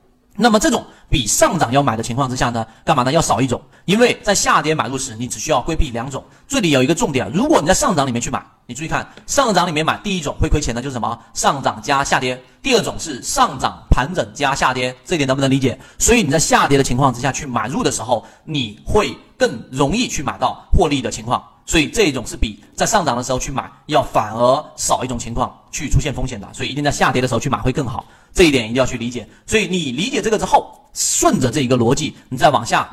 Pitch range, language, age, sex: 125-170 Hz, Chinese, 30-49, male